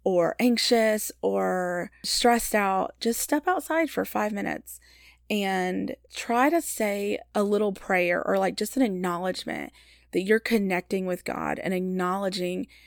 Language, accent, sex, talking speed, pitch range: English, American, female, 140 wpm, 180-210 Hz